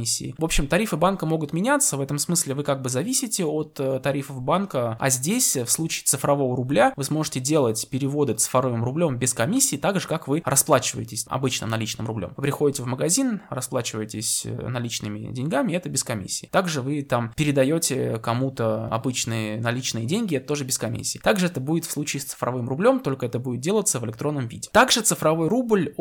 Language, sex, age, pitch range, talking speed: Russian, male, 20-39, 125-165 Hz, 180 wpm